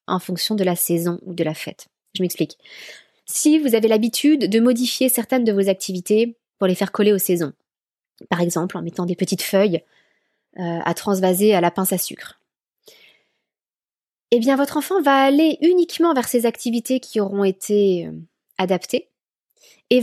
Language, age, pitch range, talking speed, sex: French, 20-39, 195-255 Hz, 170 wpm, female